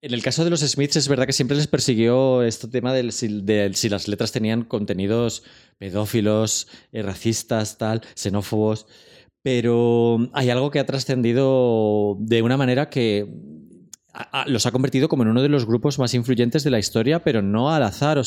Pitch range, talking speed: 115-135 Hz, 185 wpm